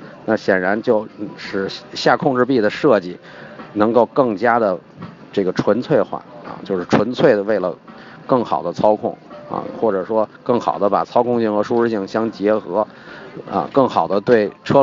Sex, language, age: male, Chinese, 50-69